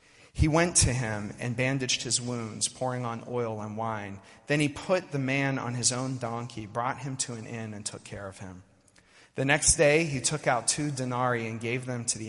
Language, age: English, 30-49